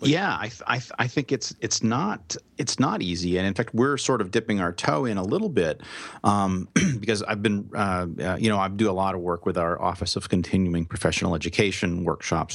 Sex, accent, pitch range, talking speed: male, American, 85-105 Hz, 230 wpm